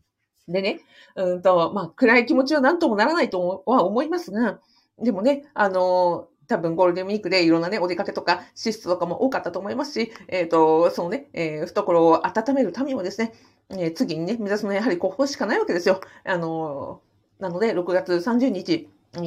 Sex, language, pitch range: female, Japanese, 175-240 Hz